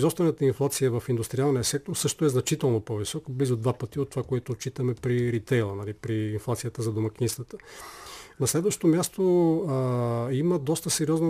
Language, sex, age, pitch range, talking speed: Bulgarian, male, 40-59, 125-160 Hz, 160 wpm